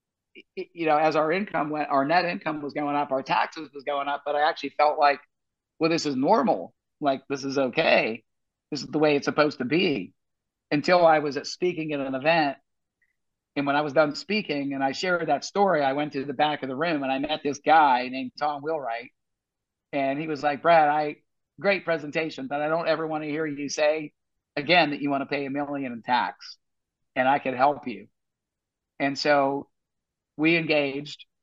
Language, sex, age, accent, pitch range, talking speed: English, male, 50-69, American, 140-160 Hz, 210 wpm